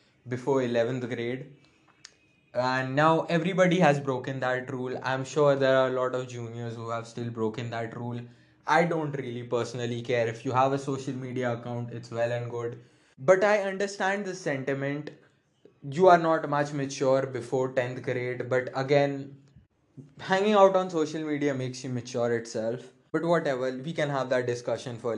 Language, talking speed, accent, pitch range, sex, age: English, 170 wpm, Indian, 120-145 Hz, male, 20-39